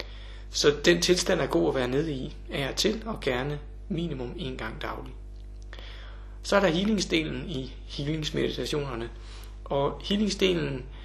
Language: Danish